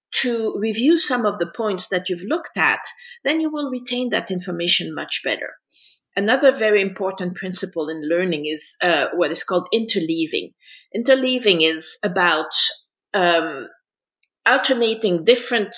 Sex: female